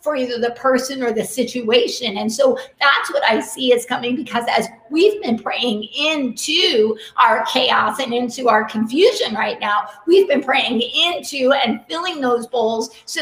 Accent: American